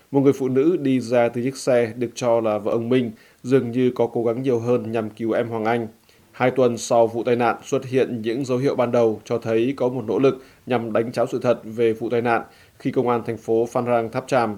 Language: Vietnamese